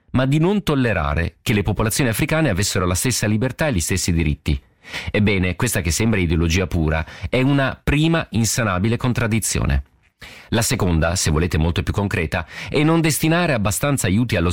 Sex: male